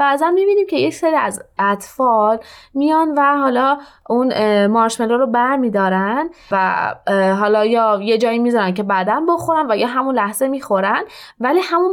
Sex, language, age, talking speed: female, Persian, 20-39, 160 wpm